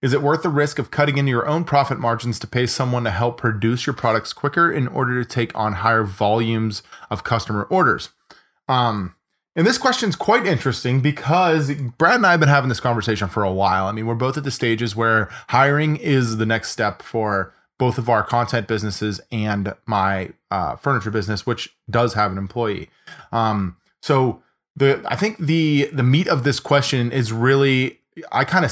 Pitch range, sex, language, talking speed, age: 110-140 Hz, male, English, 200 wpm, 20-39